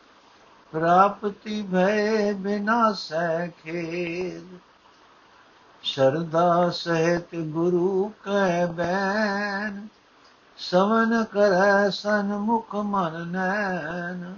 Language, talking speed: Punjabi, 55 wpm